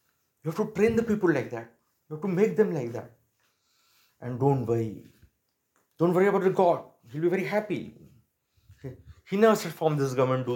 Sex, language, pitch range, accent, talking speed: male, Hindi, 120-170 Hz, native, 195 wpm